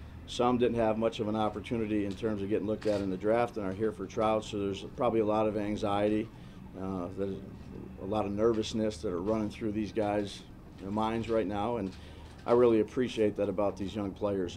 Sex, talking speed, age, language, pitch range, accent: male, 220 wpm, 40-59, English, 95-110 Hz, American